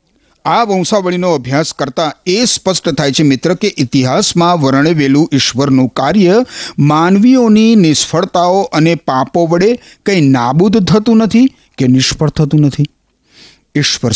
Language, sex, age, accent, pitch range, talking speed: Gujarati, male, 50-69, native, 140-205 Hz, 120 wpm